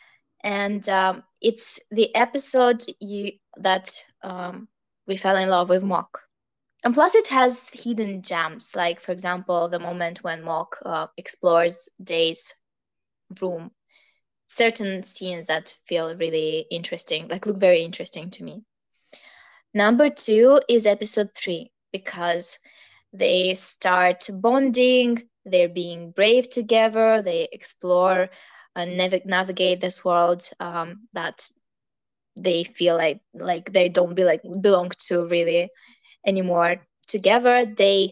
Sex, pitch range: female, 180-235 Hz